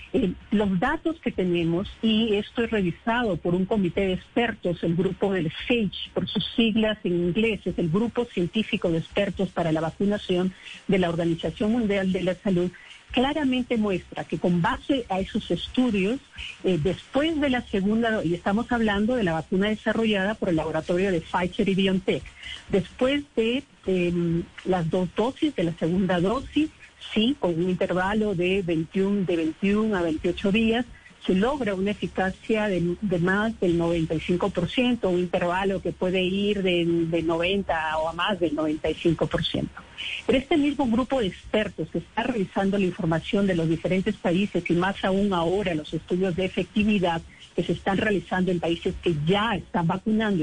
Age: 50-69